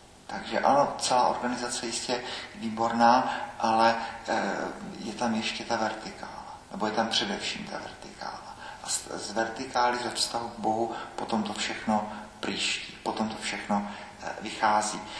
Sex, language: male, Czech